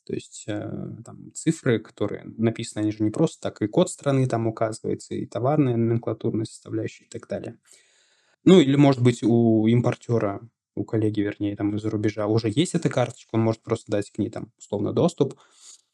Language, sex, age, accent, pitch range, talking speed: Russian, male, 20-39, native, 110-135 Hz, 185 wpm